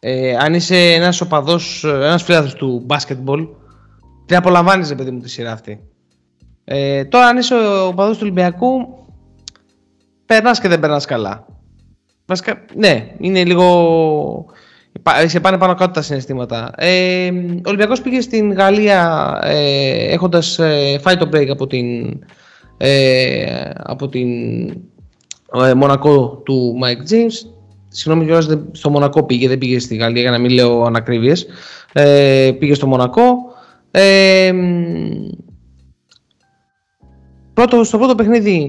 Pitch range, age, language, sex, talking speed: 130-180 Hz, 20-39, Greek, male, 130 wpm